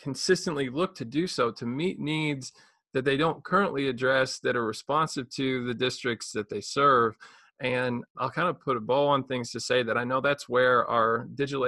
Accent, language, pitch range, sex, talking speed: American, English, 120-140 Hz, male, 205 wpm